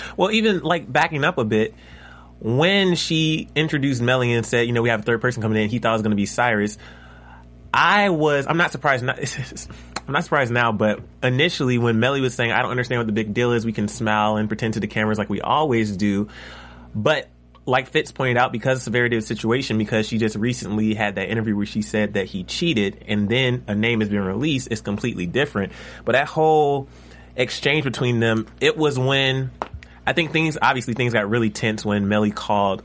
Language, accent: English, American